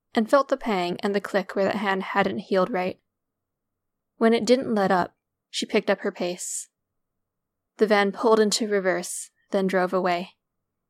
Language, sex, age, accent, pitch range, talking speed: English, female, 10-29, American, 185-210 Hz, 170 wpm